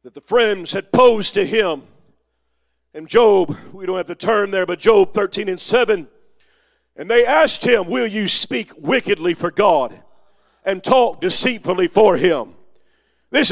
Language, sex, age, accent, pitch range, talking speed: English, male, 40-59, American, 220-300 Hz, 160 wpm